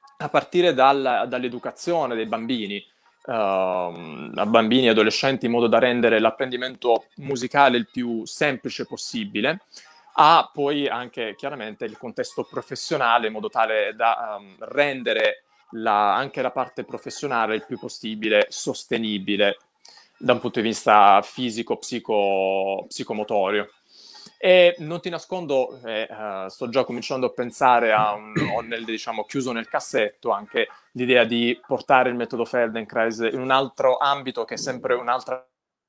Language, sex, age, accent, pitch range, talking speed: Italian, male, 20-39, native, 110-135 Hz, 130 wpm